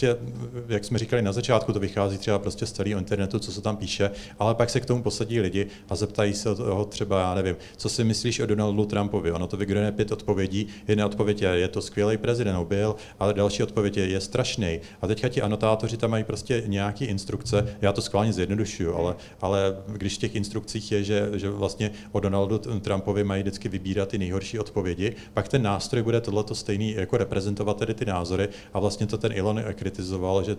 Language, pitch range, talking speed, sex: Czech, 100-110 Hz, 210 wpm, male